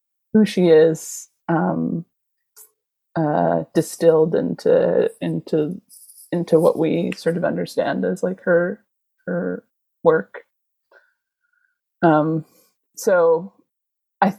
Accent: American